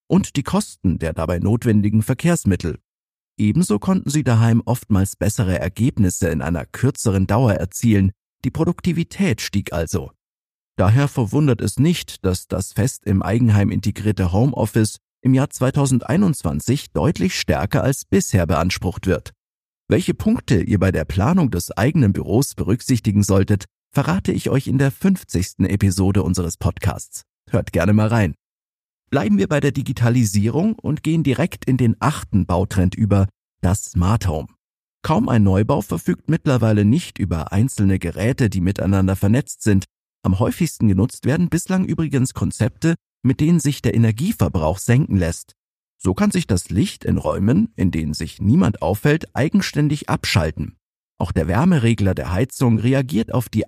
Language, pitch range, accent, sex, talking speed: German, 95-135 Hz, German, male, 150 wpm